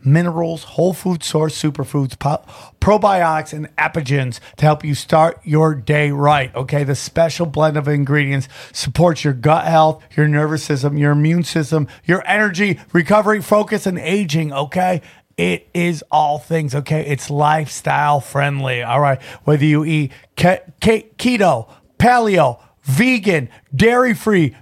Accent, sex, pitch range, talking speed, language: American, male, 130-170 Hz, 130 wpm, English